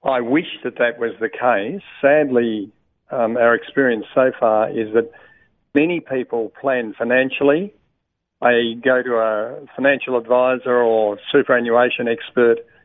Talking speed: 130 wpm